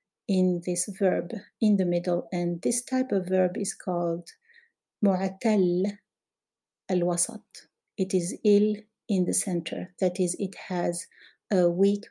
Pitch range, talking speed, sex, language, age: 180-215 Hz, 135 wpm, female, English, 50-69